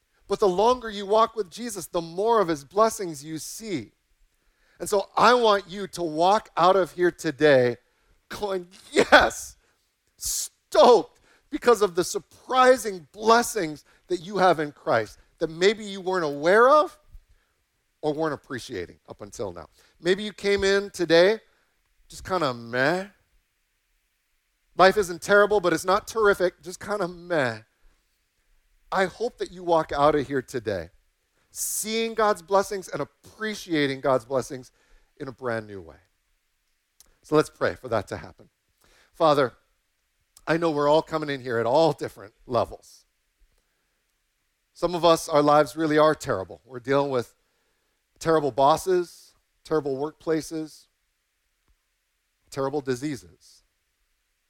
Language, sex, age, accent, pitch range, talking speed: English, male, 40-59, American, 140-200 Hz, 140 wpm